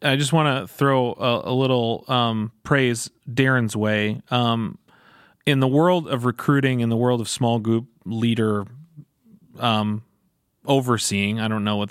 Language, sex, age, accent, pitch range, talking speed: English, male, 30-49, American, 105-130 Hz, 155 wpm